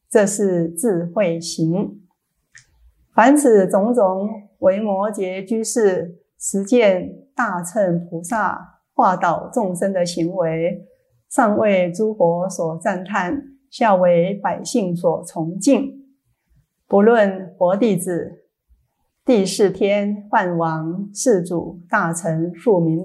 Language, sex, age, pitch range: Chinese, female, 30-49, 175-230 Hz